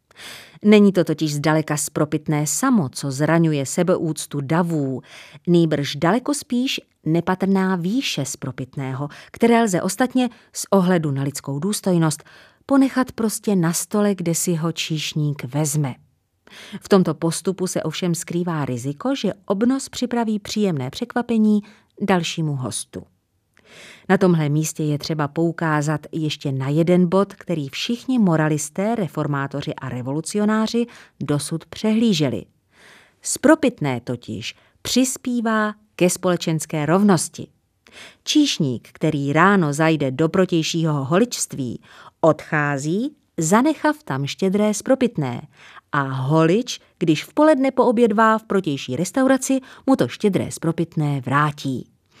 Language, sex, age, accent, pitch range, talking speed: Czech, female, 30-49, native, 150-210 Hz, 110 wpm